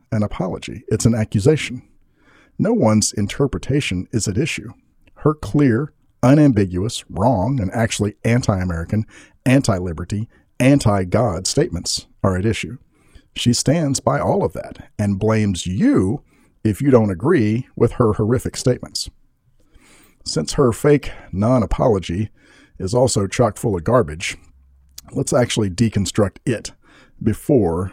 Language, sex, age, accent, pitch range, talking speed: English, male, 50-69, American, 95-125 Hz, 120 wpm